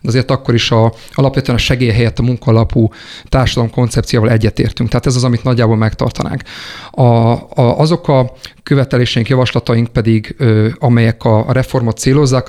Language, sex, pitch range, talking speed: Hungarian, male, 115-130 Hz, 155 wpm